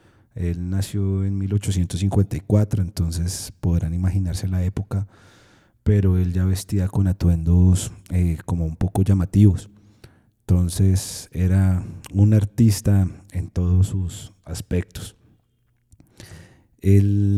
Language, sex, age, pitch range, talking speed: Spanish, male, 30-49, 90-110 Hz, 100 wpm